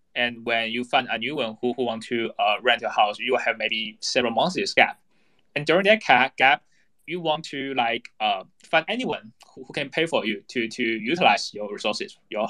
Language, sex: English, male